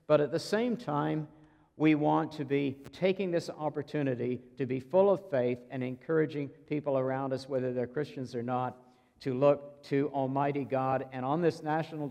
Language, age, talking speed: English, 60-79, 180 wpm